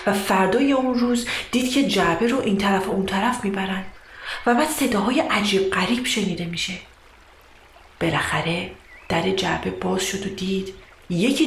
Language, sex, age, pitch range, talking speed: Persian, female, 40-59, 190-245 Hz, 150 wpm